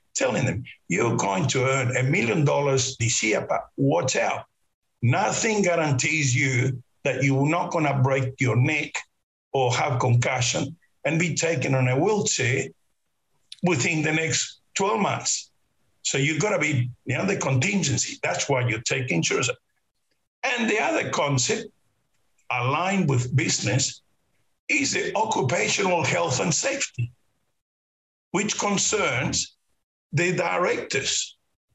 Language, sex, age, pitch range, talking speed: English, male, 60-79, 125-150 Hz, 135 wpm